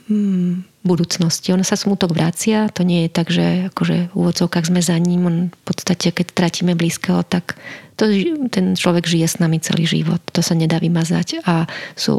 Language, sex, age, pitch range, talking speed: Slovak, female, 30-49, 170-190 Hz, 180 wpm